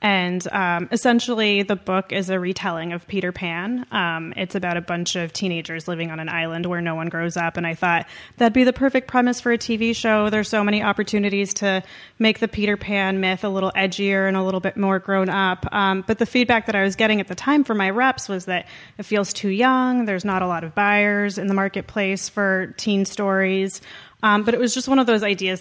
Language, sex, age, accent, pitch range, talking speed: English, female, 30-49, American, 185-220 Hz, 235 wpm